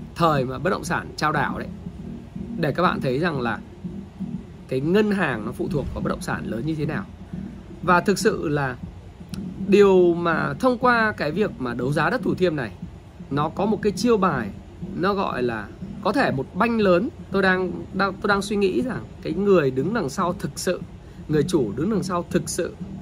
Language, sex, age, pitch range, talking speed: Vietnamese, male, 20-39, 155-195 Hz, 210 wpm